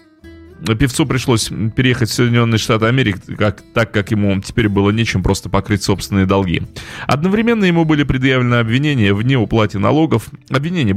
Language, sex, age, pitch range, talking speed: Russian, male, 30-49, 95-130 Hz, 140 wpm